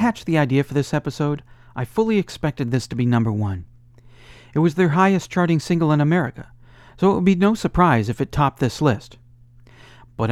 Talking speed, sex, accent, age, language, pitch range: 190 wpm, male, American, 50-69, English, 120-170 Hz